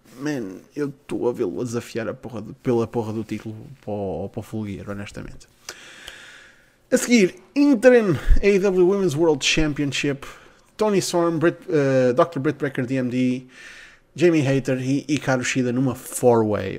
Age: 30-49